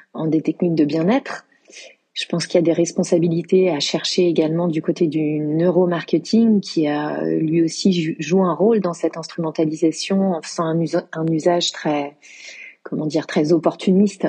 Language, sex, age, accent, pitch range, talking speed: French, female, 30-49, French, 155-190 Hz, 170 wpm